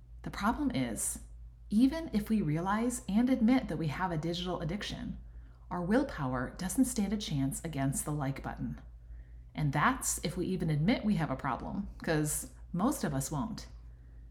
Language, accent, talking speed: English, American, 170 wpm